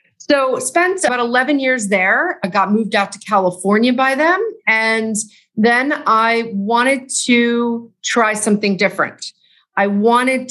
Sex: female